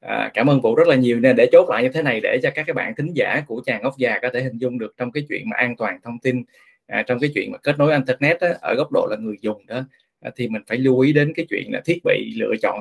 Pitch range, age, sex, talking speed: 120-165 Hz, 20-39, male, 315 wpm